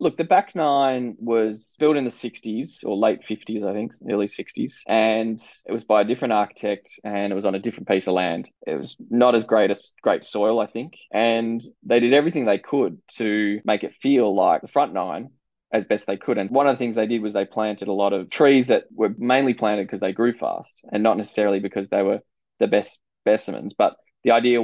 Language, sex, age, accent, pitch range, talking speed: English, male, 20-39, Australian, 105-120 Hz, 230 wpm